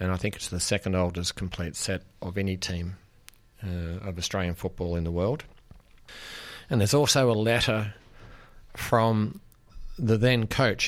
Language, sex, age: English, male, 40-59